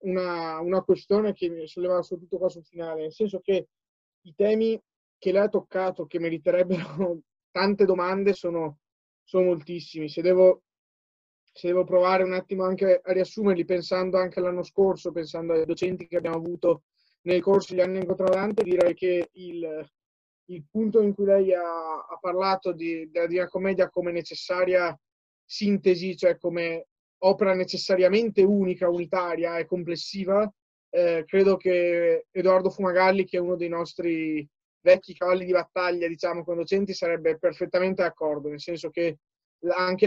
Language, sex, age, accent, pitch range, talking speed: Italian, male, 20-39, native, 170-190 Hz, 150 wpm